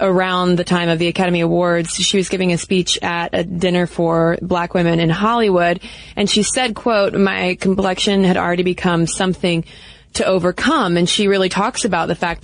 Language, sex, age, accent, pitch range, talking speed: English, female, 20-39, American, 175-195 Hz, 190 wpm